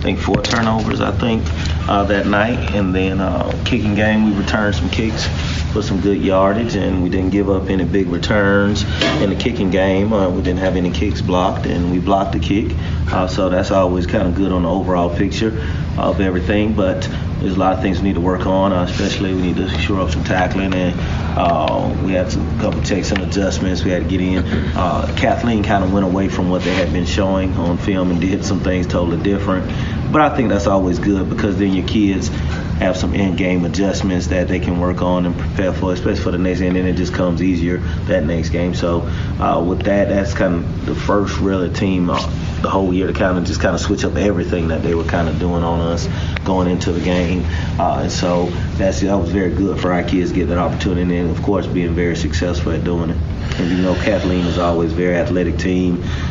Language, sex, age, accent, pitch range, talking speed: English, male, 30-49, American, 85-95 Hz, 240 wpm